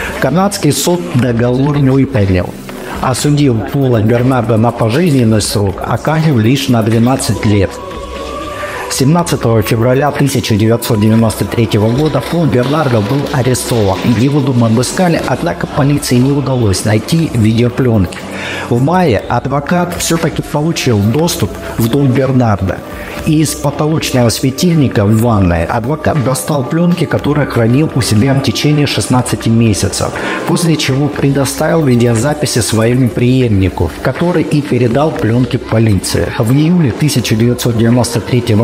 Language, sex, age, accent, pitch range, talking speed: Russian, male, 50-69, native, 115-145 Hz, 115 wpm